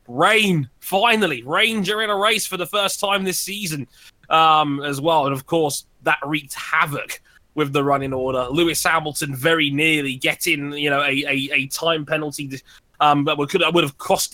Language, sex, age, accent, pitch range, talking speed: English, male, 20-39, British, 140-165 Hz, 180 wpm